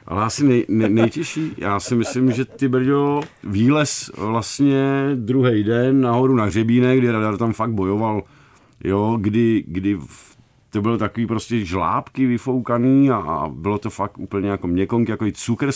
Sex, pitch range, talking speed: male, 100-120 Hz, 160 wpm